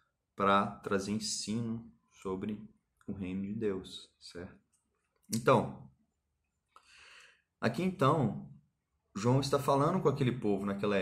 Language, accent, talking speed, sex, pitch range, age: Portuguese, Brazilian, 105 wpm, male, 85-135 Hz, 20-39